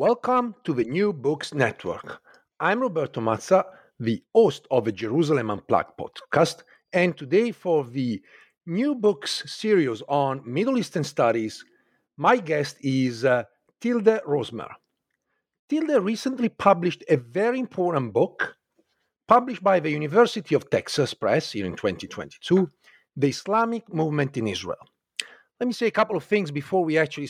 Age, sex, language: 50-69, male, English